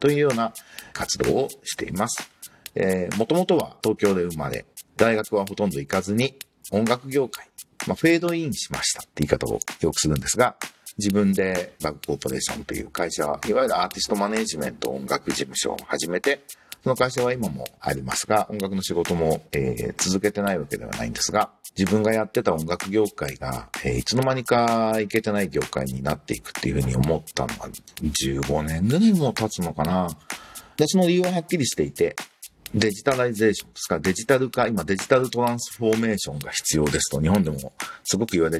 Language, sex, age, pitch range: Japanese, male, 50-69, 85-130 Hz